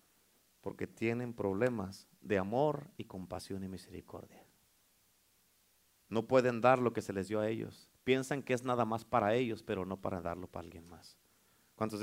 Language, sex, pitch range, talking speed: Spanish, male, 105-150 Hz, 170 wpm